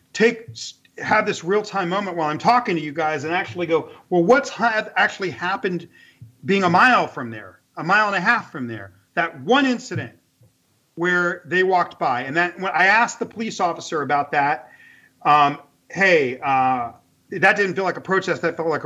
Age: 40-59